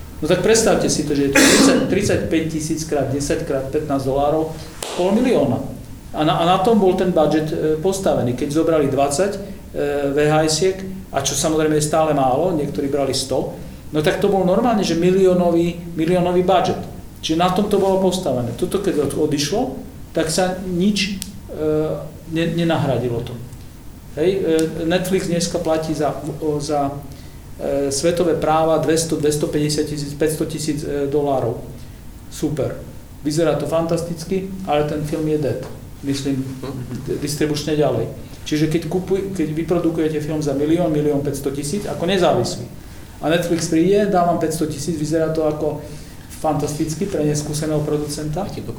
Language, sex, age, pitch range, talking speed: Czech, male, 50-69, 150-175 Hz, 145 wpm